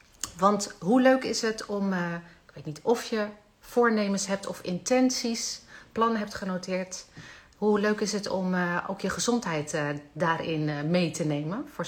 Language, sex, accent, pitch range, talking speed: Dutch, female, Dutch, 175-230 Hz, 155 wpm